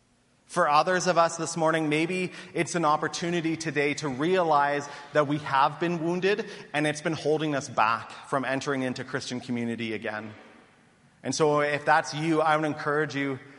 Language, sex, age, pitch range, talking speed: English, male, 30-49, 135-160 Hz, 170 wpm